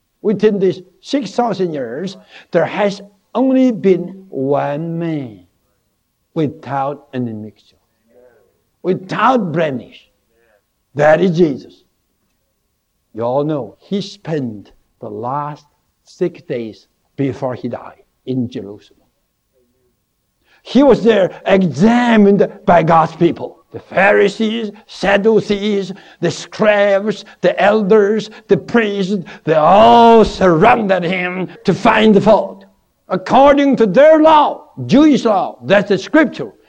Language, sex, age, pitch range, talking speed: English, male, 60-79, 155-225 Hz, 110 wpm